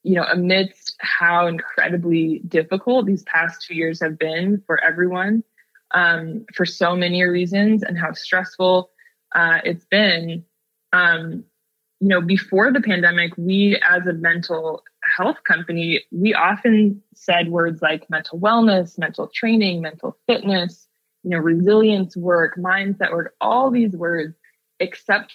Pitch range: 170-200 Hz